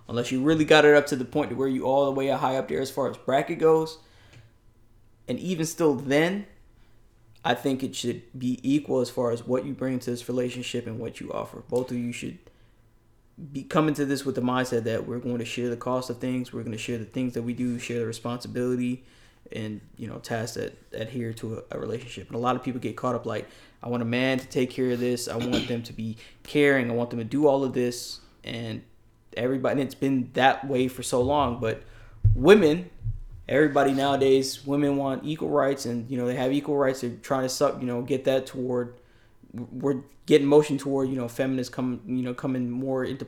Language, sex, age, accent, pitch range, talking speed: English, male, 20-39, American, 120-140 Hz, 230 wpm